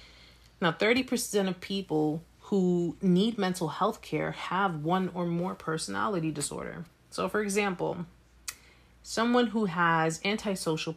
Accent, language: American, English